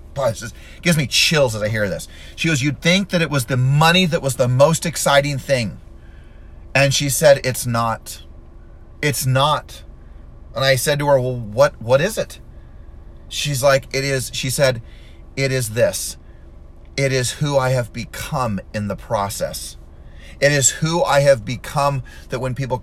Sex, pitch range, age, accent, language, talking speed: male, 110-150 Hz, 30-49, American, English, 175 wpm